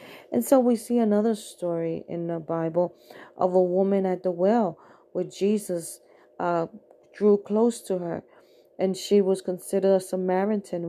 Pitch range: 180-220 Hz